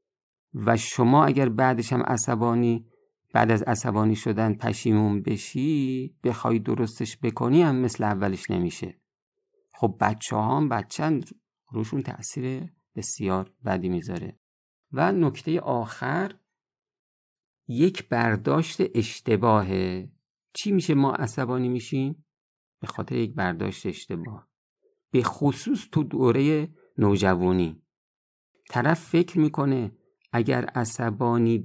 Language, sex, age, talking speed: Persian, male, 50-69, 100 wpm